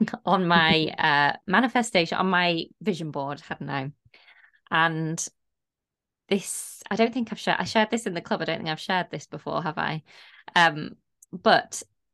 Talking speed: 170 wpm